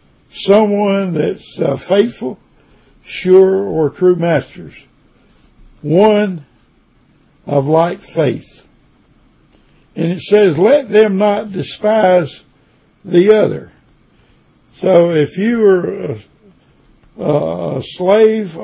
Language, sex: English, male